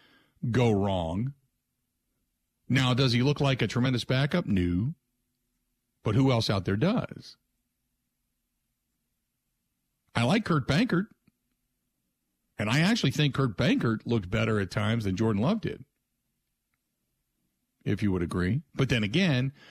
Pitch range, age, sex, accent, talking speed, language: 100-135 Hz, 50-69, male, American, 130 wpm, English